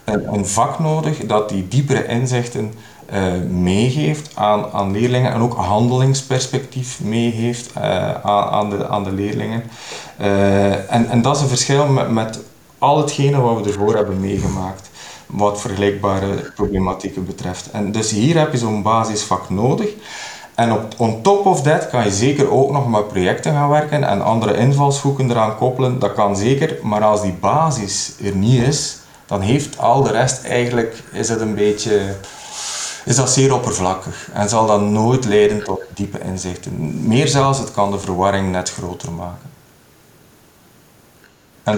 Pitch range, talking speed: 100-125 Hz, 160 wpm